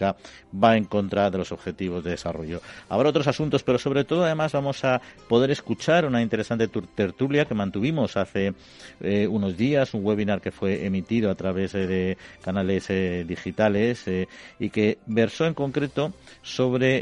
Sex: male